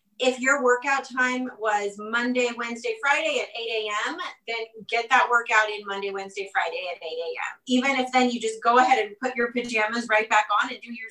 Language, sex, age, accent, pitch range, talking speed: English, female, 30-49, American, 220-260 Hz, 210 wpm